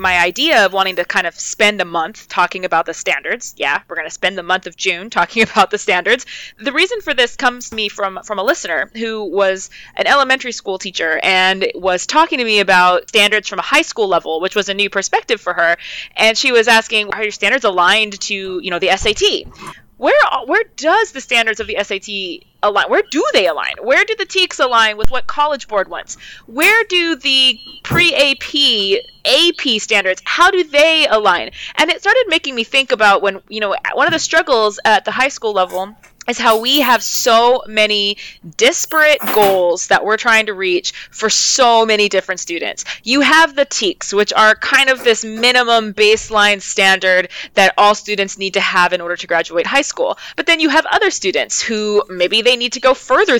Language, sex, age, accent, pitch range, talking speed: English, female, 20-39, American, 190-275 Hz, 205 wpm